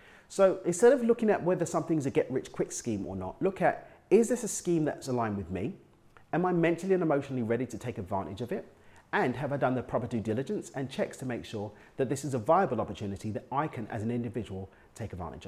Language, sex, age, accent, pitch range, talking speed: English, male, 30-49, British, 115-150 Hz, 235 wpm